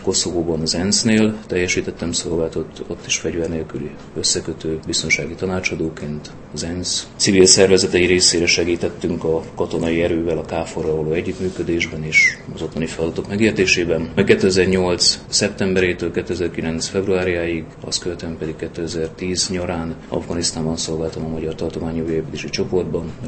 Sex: male